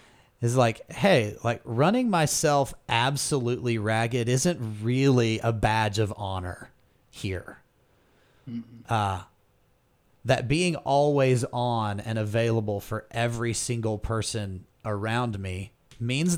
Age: 30-49